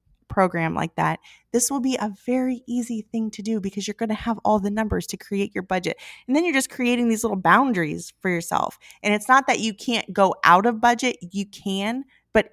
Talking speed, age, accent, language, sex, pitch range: 225 wpm, 20-39, American, English, female, 175-220 Hz